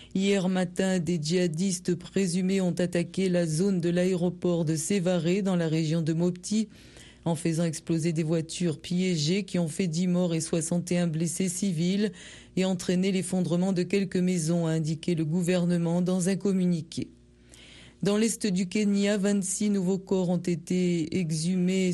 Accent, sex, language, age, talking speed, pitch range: French, female, French, 40-59, 155 wpm, 165-190 Hz